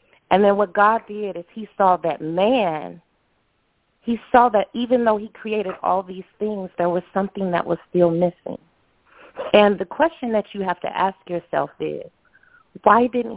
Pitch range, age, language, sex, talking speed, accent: 175-230 Hz, 30-49, English, female, 175 wpm, American